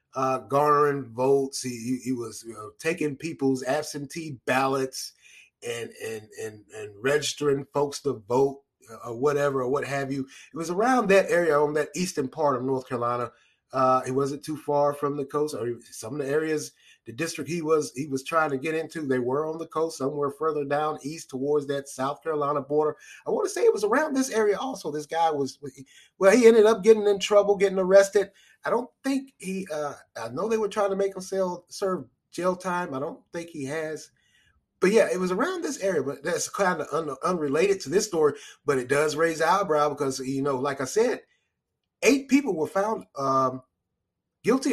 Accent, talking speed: American, 205 wpm